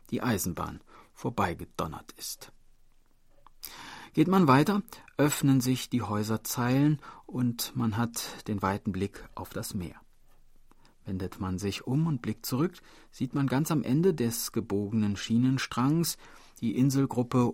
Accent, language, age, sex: German, German, 40-59, male